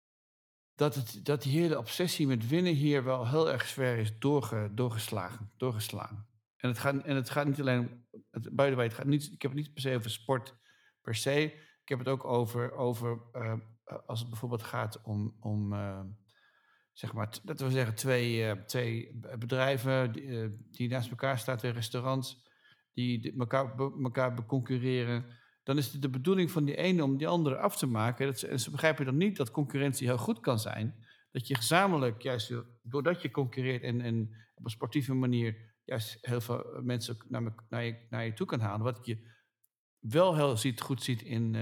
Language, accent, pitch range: English, Dutch, 115-140 Hz